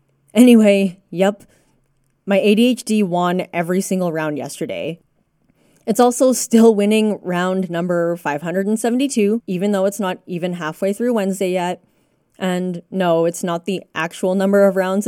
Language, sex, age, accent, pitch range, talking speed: English, female, 20-39, American, 180-225 Hz, 135 wpm